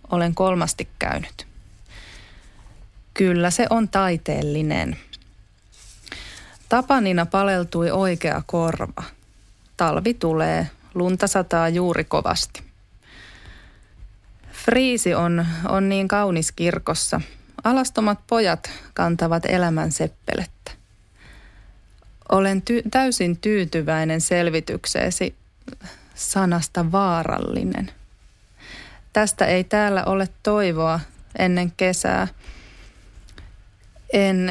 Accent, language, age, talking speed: native, Finnish, 30-49, 75 wpm